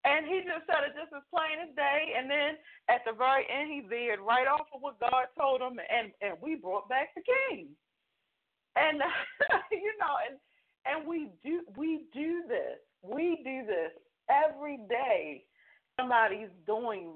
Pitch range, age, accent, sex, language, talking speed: 175-295 Hz, 40-59, American, female, English, 170 wpm